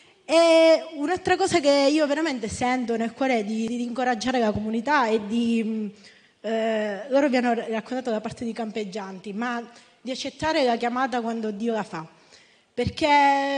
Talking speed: 165 wpm